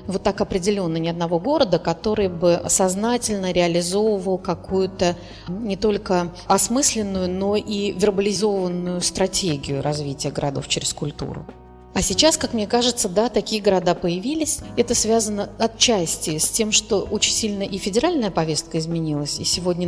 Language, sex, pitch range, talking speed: Russian, female, 170-205 Hz, 135 wpm